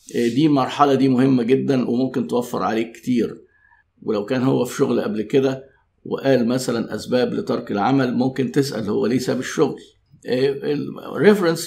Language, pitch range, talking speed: Arabic, 110-155 Hz, 145 wpm